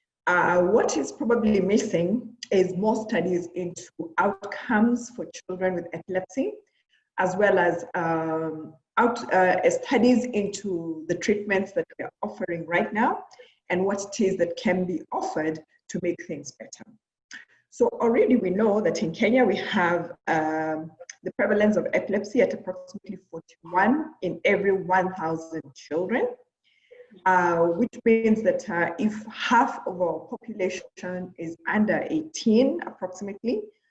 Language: English